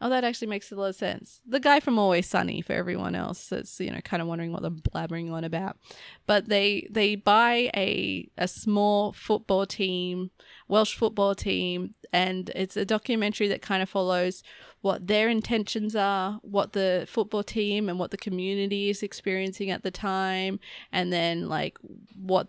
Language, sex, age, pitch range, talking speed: English, female, 20-39, 185-215 Hz, 185 wpm